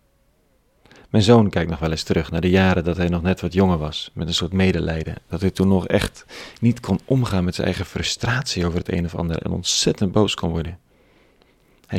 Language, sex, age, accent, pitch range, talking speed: Dutch, male, 40-59, Dutch, 85-100 Hz, 220 wpm